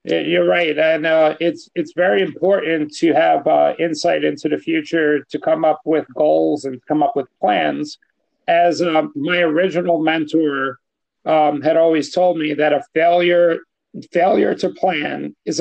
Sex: male